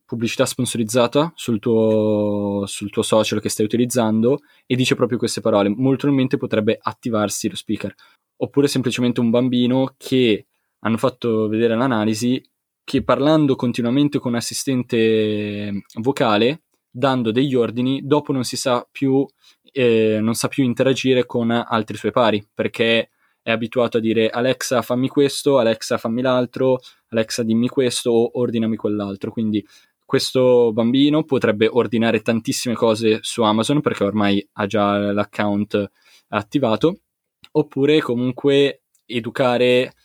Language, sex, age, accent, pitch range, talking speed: Italian, male, 10-29, native, 110-130 Hz, 135 wpm